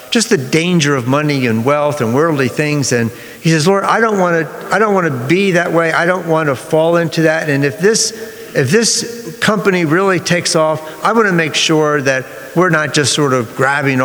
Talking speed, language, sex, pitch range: 225 wpm, English, male, 135-185 Hz